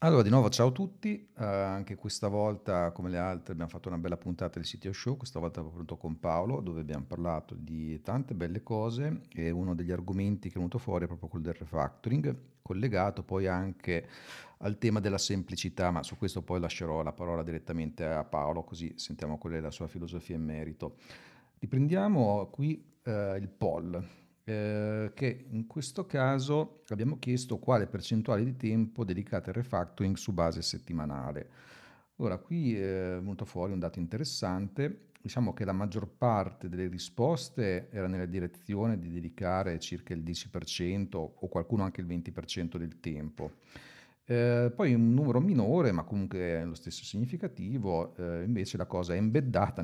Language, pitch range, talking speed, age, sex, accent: Italian, 85-115 Hz, 170 wpm, 50-69, male, native